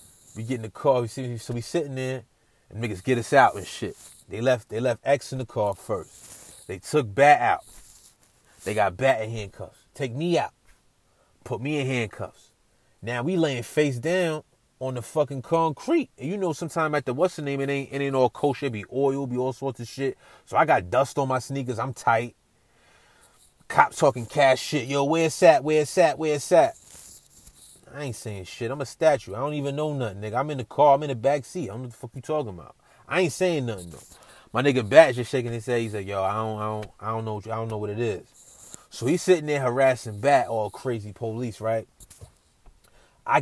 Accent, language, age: American, English, 30-49